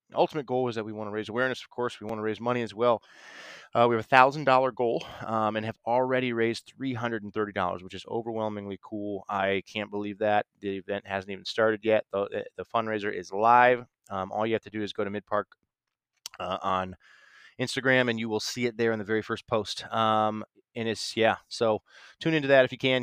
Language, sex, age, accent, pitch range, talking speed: English, male, 20-39, American, 100-120 Hz, 220 wpm